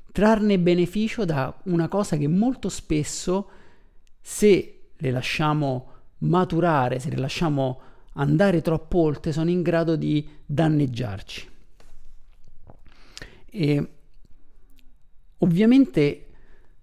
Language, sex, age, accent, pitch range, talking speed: Italian, male, 40-59, native, 145-185 Hz, 90 wpm